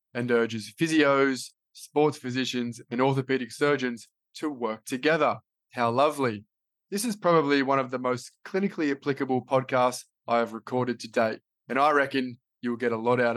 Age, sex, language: 20-39, male, English